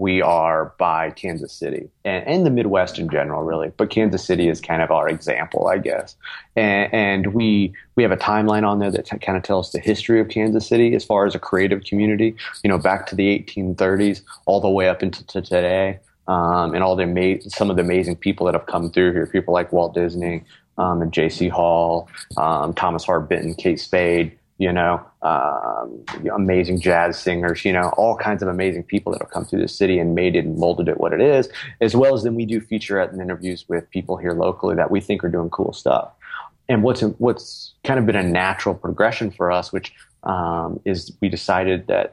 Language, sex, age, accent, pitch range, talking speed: English, male, 30-49, American, 90-100 Hz, 220 wpm